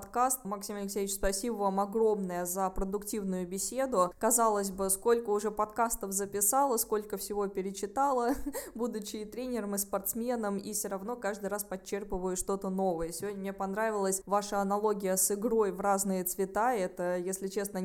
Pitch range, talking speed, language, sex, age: 190-215 Hz, 145 wpm, Russian, female, 20-39